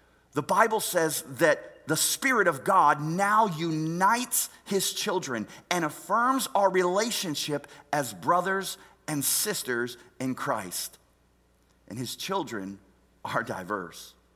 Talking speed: 115 wpm